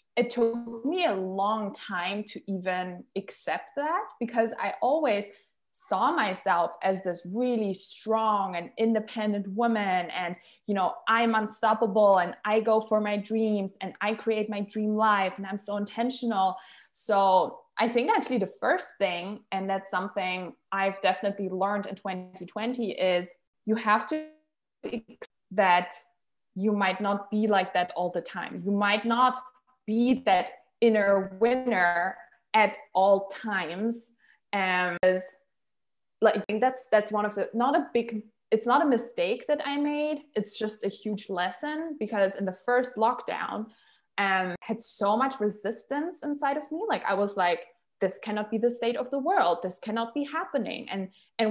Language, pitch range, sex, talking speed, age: English, 190-235 Hz, female, 160 wpm, 20-39